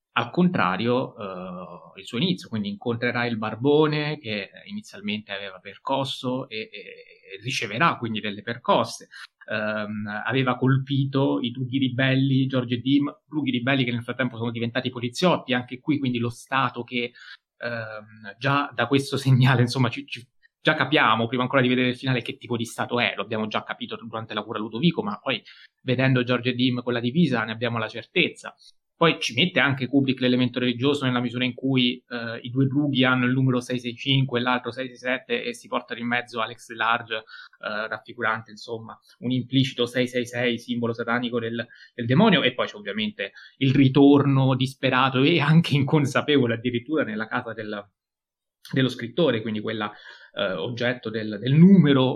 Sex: male